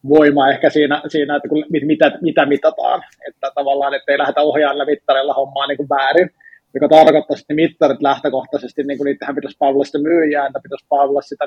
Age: 20-39